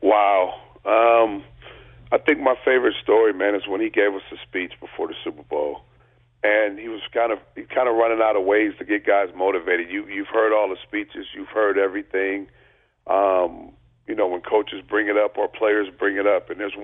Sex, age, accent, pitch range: male, 40-59, American, 105-125 Hz